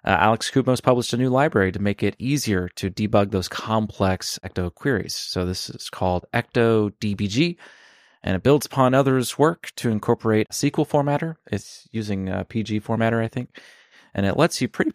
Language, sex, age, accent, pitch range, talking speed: English, male, 30-49, American, 100-125 Hz, 180 wpm